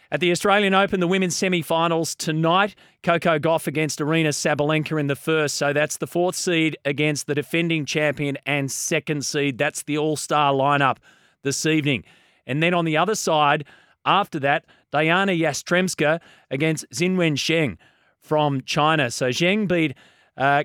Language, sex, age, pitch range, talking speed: English, male, 30-49, 135-165 Hz, 160 wpm